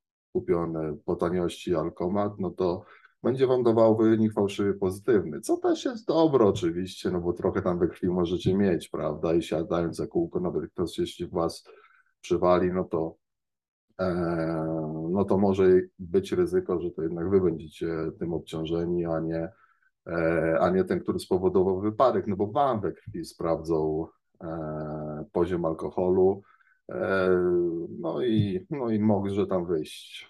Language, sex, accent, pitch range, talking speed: Polish, male, native, 80-110 Hz, 140 wpm